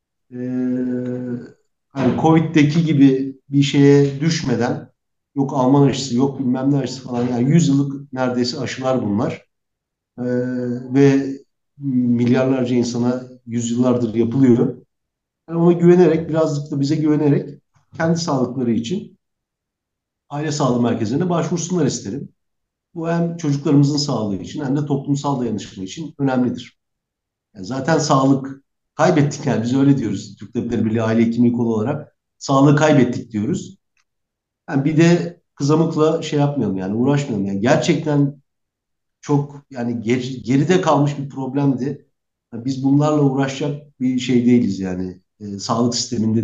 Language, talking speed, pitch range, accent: Turkish, 125 wpm, 120-145 Hz, native